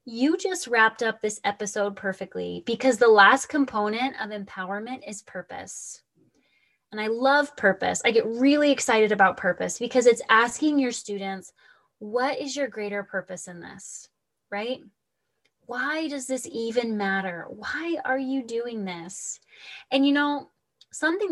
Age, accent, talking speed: 20-39, American, 145 wpm